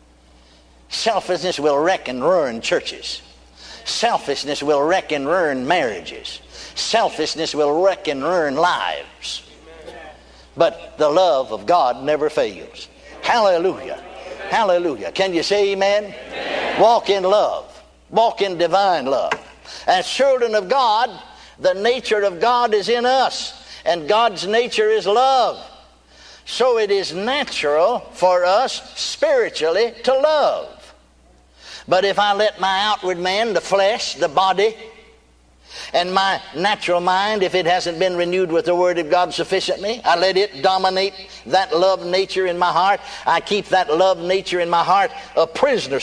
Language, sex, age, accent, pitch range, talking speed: English, male, 60-79, American, 170-240 Hz, 140 wpm